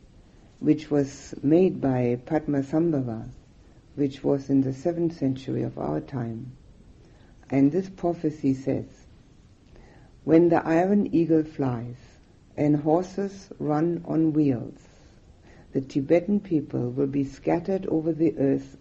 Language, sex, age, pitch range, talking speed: English, female, 60-79, 130-155 Hz, 120 wpm